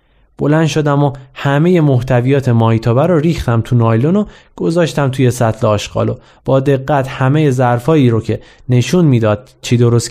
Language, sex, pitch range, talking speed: Persian, male, 110-155 Hz, 155 wpm